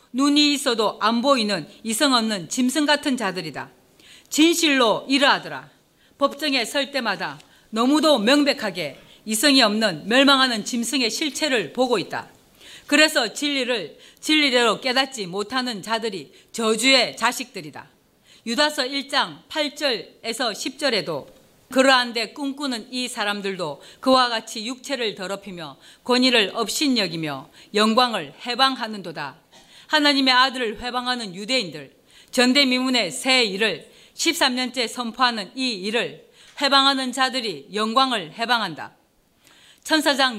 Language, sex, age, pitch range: Korean, female, 40-59, 215-270 Hz